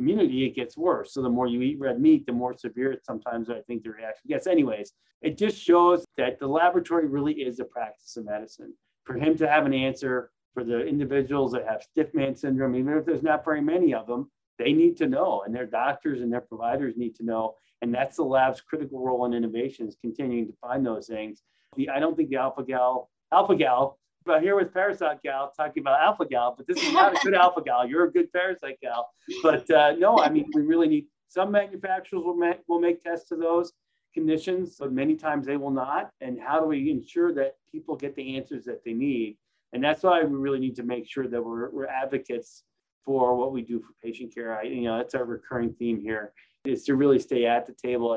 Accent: American